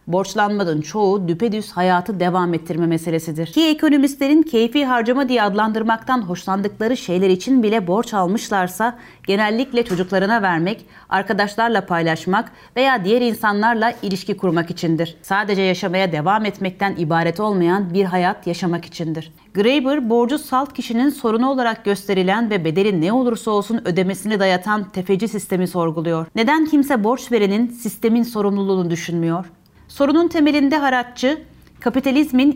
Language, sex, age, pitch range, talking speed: Turkish, female, 30-49, 180-240 Hz, 125 wpm